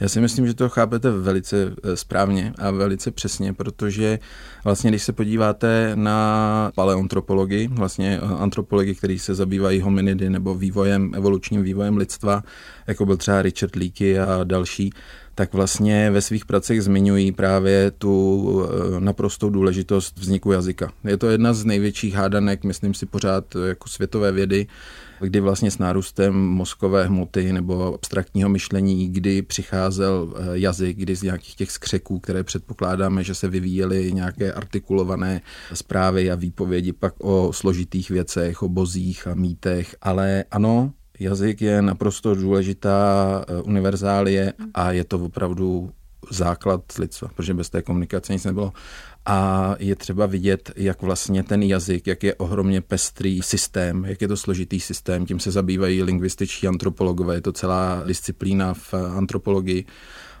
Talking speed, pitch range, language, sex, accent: 140 wpm, 95-100 Hz, Czech, male, native